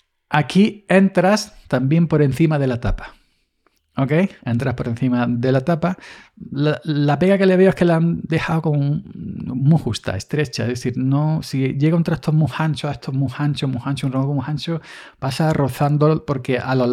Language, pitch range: Spanish, 125-155 Hz